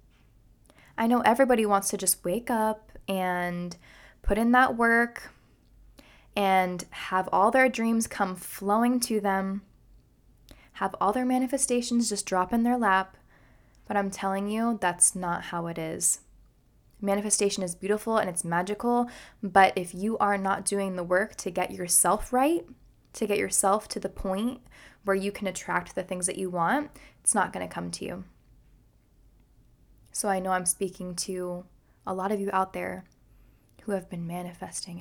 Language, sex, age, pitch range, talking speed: English, female, 10-29, 175-210 Hz, 165 wpm